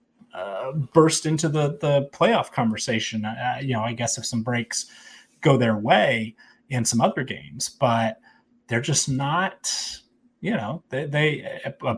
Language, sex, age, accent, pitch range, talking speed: English, male, 30-49, American, 120-145 Hz, 155 wpm